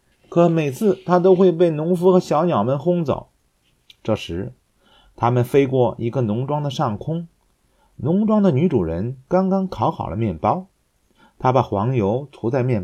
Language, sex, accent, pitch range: Chinese, male, native, 115-180 Hz